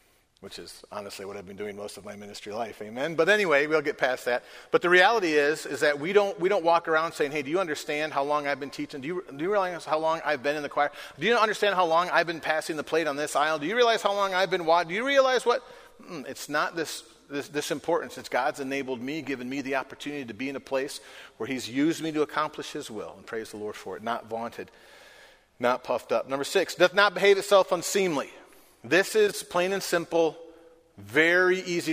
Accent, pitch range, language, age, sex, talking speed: American, 130-165 Hz, English, 40-59, male, 245 wpm